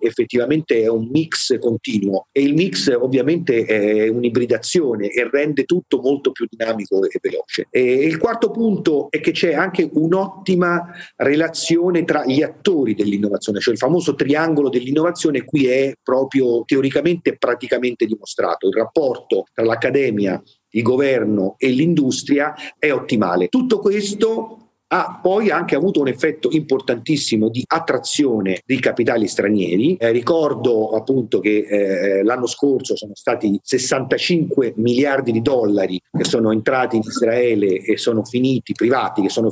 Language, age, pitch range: Italian, 40-59, 115-165 Hz